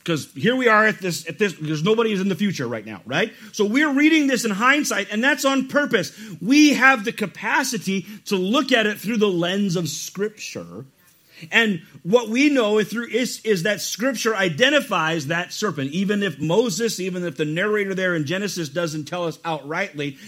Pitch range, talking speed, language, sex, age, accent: 135-210 Hz, 200 wpm, English, male, 40-59, American